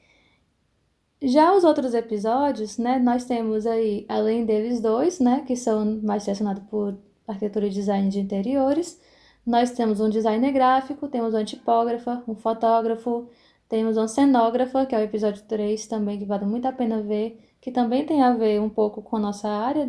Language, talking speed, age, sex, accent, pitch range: Portuguese, 175 wpm, 10-29, female, Brazilian, 215-255 Hz